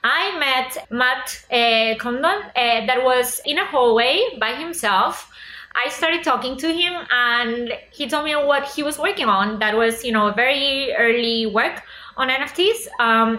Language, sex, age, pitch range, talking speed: English, female, 20-39, 220-265 Hz, 165 wpm